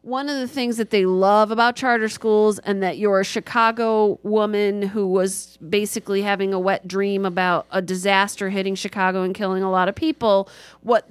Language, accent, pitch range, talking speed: English, American, 185-225 Hz, 190 wpm